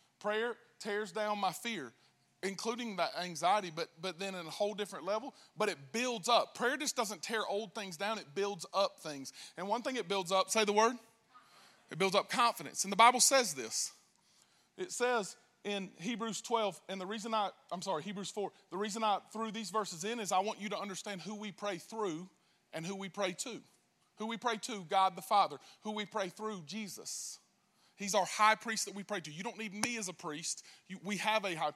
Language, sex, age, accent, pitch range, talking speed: English, male, 30-49, American, 195-235 Hz, 215 wpm